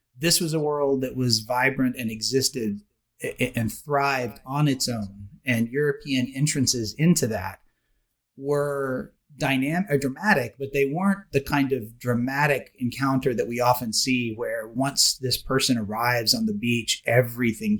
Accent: American